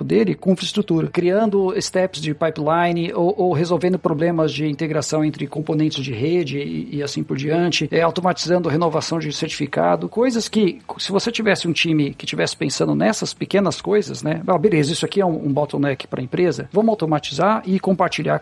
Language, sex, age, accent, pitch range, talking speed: Portuguese, male, 50-69, Brazilian, 150-185 Hz, 180 wpm